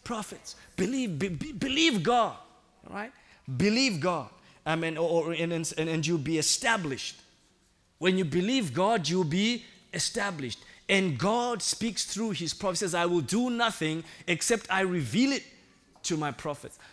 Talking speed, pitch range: 140 wpm, 135-185 Hz